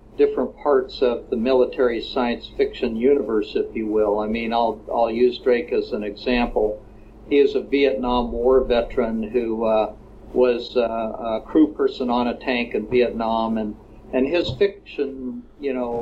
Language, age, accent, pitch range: English, 50-69, American, 115-140 Hz